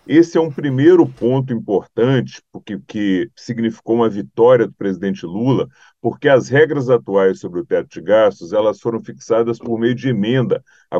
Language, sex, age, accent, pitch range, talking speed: Portuguese, male, 40-59, Brazilian, 110-140 Hz, 160 wpm